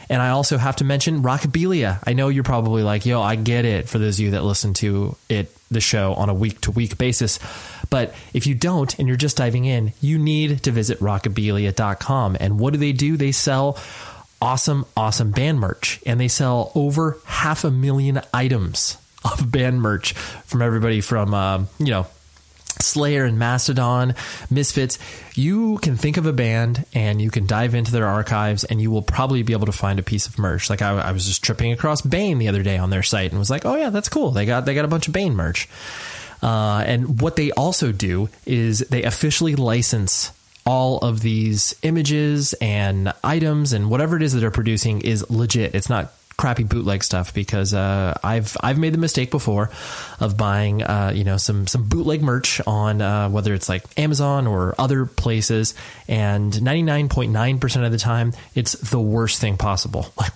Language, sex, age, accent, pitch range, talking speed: English, male, 20-39, American, 105-135 Hz, 200 wpm